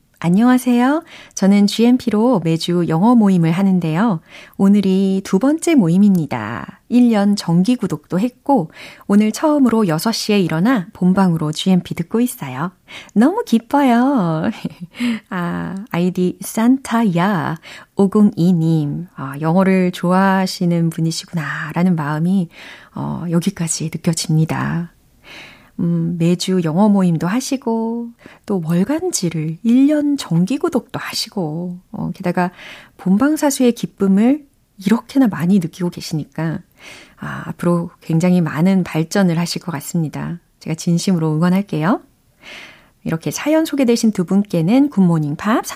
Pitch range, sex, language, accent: 170-230 Hz, female, Korean, native